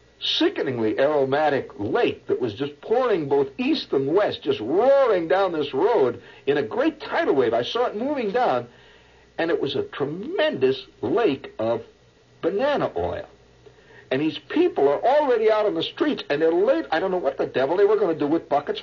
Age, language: 60-79, English